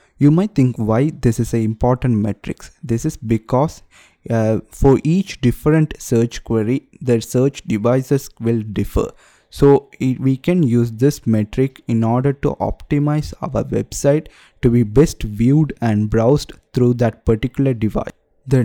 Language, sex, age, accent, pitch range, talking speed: English, male, 20-39, Indian, 115-140 Hz, 150 wpm